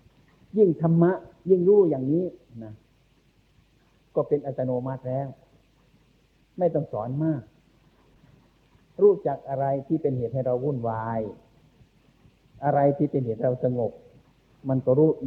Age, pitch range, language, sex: 60-79, 125-160 Hz, Thai, male